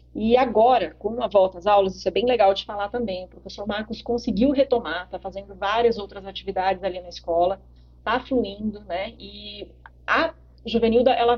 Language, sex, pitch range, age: Portuguese, female, 185-270 Hz, 30-49